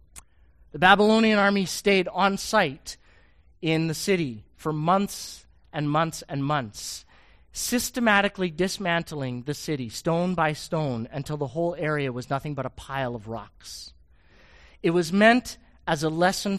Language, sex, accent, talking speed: English, male, American, 140 wpm